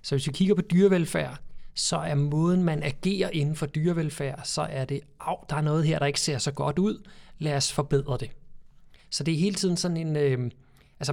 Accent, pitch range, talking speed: native, 140-165 Hz, 220 wpm